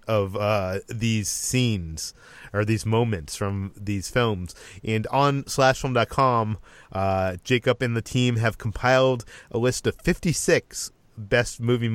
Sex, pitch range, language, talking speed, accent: male, 100-130 Hz, English, 135 wpm, American